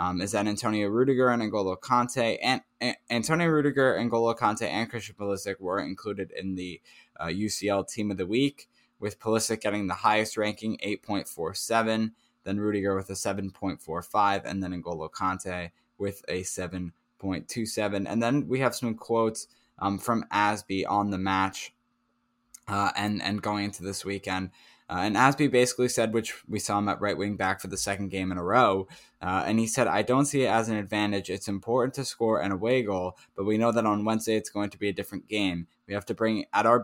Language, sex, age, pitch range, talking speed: English, male, 10-29, 95-115 Hz, 200 wpm